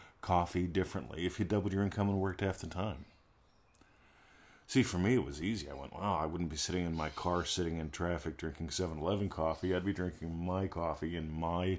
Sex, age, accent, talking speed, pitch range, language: male, 50-69, American, 220 wpm, 80-100 Hz, English